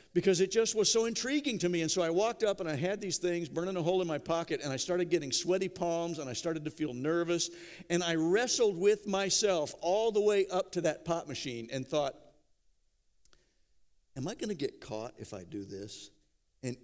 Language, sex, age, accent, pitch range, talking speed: English, male, 50-69, American, 135-185 Hz, 215 wpm